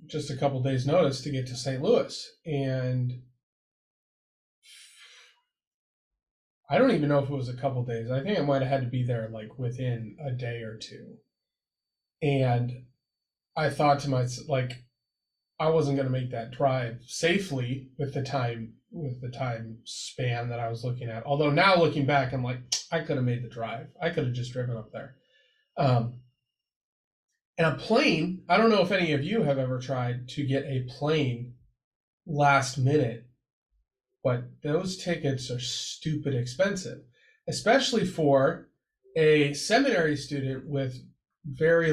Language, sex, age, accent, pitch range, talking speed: English, male, 30-49, American, 125-155 Hz, 165 wpm